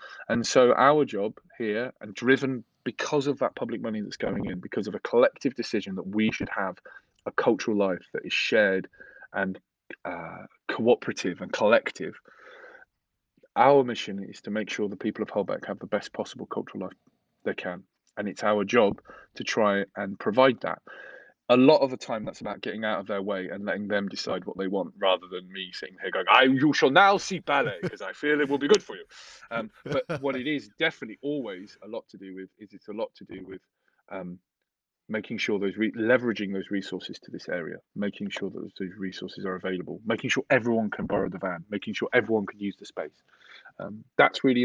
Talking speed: 205 wpm